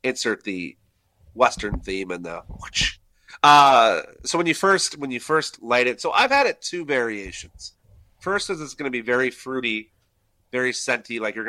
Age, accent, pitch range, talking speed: 30-49, American, 100-140 Hz, 180 wpm